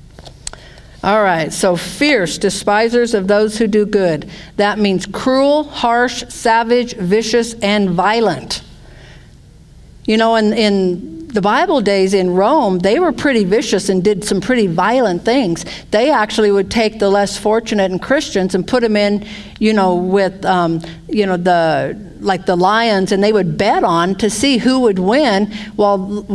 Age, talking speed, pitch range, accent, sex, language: 50-69, 160 wpm, 190-240 Hz, American, female, English